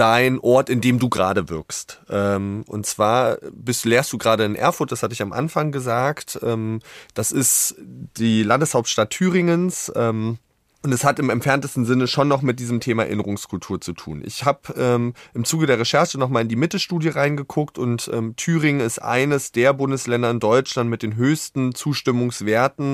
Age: 30-49